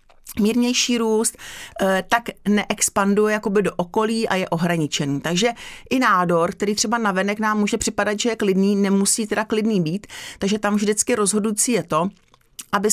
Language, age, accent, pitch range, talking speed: Czech, 40-59, native, 185-220 Hz, 160 wpm